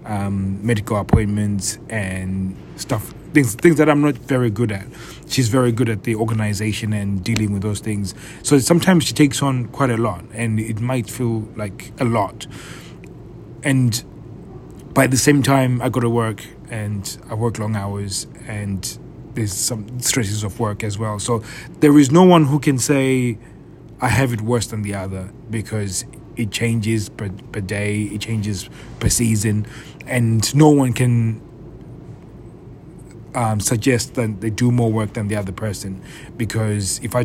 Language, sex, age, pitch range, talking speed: English, male, 30-49, 105-130 Hz, 170 wpm